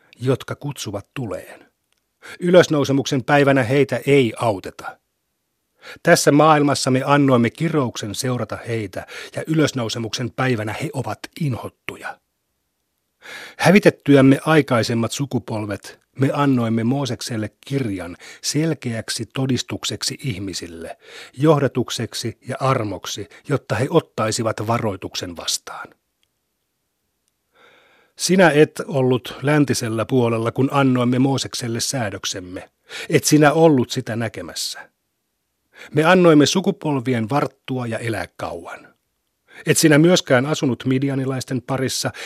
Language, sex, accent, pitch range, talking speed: Finnish, male, native, 115-145 Hz, 95 wpm